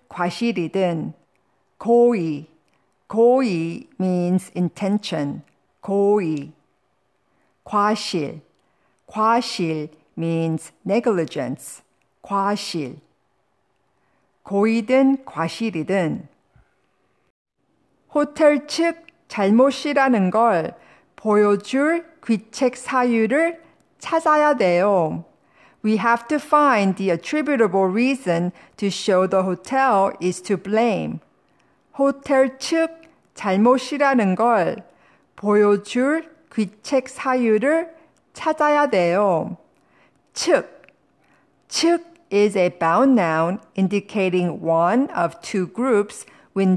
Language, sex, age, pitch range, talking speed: English, female, 50-69, 185-270 Hz, 75 wpm